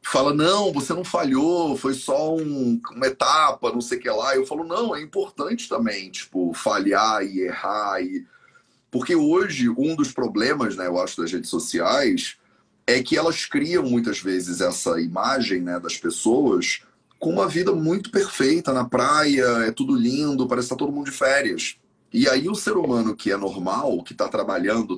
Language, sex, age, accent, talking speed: Portuguese, male, 30-49, Brazilian, 185 wpm